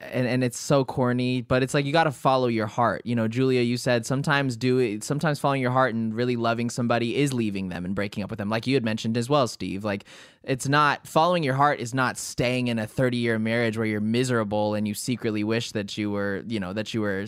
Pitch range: 110-135 Hz